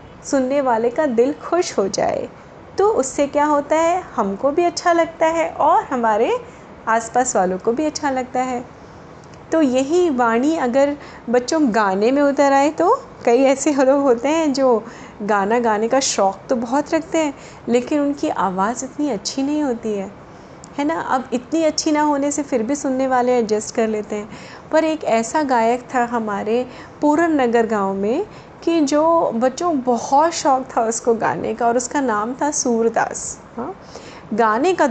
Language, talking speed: Hindi, 175 wpm